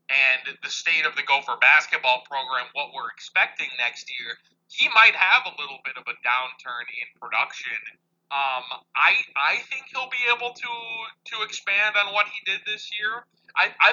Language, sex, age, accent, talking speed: English, male, 30-49, American, 180 wpm